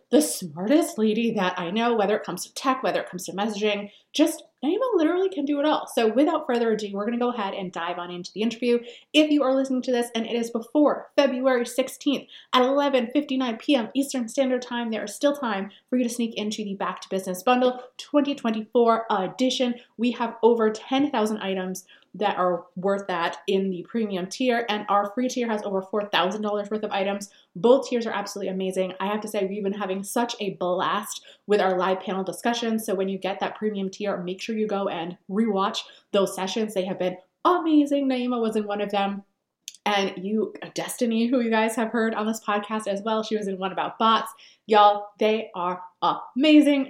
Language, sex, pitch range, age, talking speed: English, female, 195-250 Hz, 30-49, 205 wpm